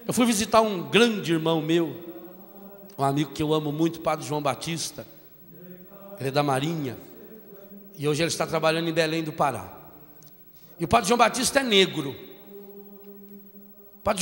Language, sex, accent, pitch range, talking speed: Portuguese, male, Brazilian, 170-240 Hz, 160 wpm